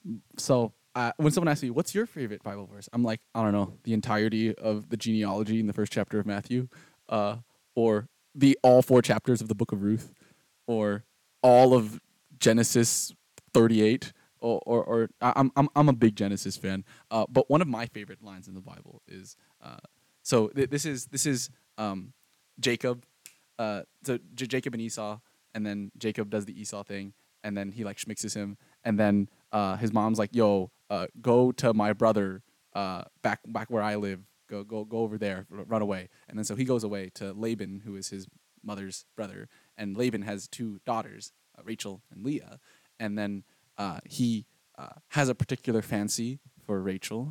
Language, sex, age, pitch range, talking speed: English, male, 20-39, 105-125 Hz, 190 wpm